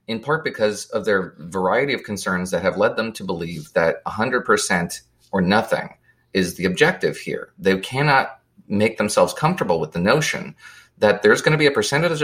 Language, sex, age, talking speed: English, male, 30-49, 180 wpm